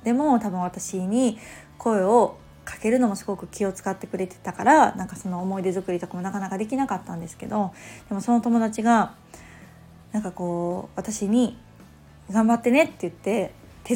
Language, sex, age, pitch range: Japanese, female, 20-39, 185-240 Hz